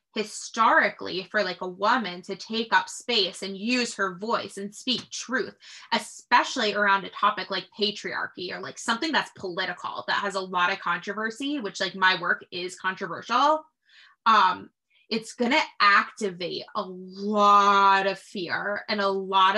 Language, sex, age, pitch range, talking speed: English, female, 20-39, 195-225 Hz, 155 wpm